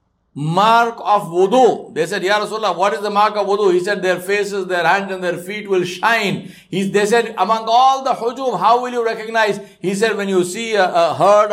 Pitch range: 180-230 Hz